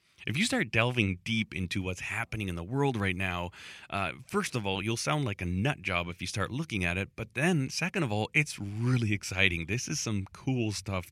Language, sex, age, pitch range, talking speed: English, male, 30-49, 95-125 Hz, 225 wpm